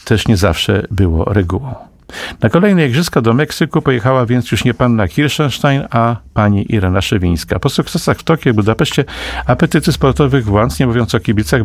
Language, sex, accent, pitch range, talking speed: Polish, male, native, 100-130 Hz, 170 wpm